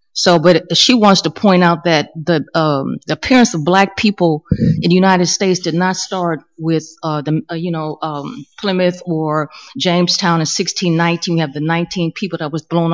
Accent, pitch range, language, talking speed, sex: American, 160-195 Hz, English, 195 wpm, female